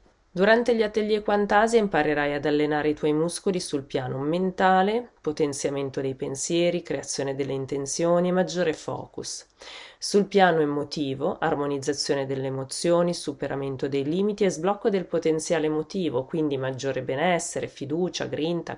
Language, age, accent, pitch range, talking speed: Italian, 30-49, native, 140-185 Hz, 130 wpm